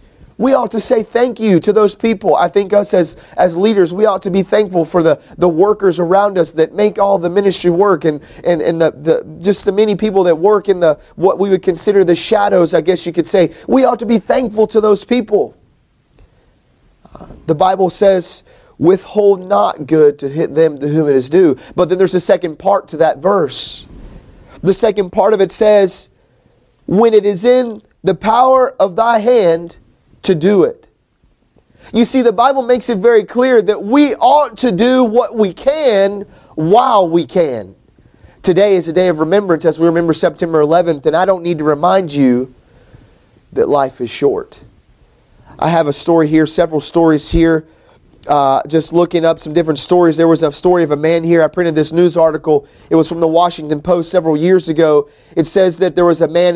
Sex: male